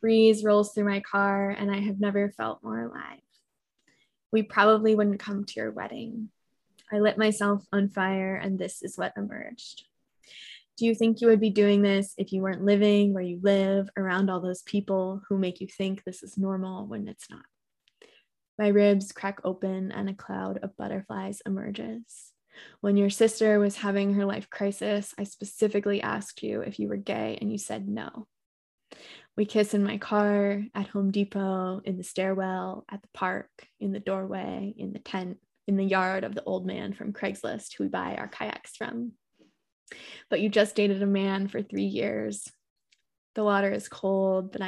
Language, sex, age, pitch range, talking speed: English, female, 20-39, 190-210 Hz, 185 wpm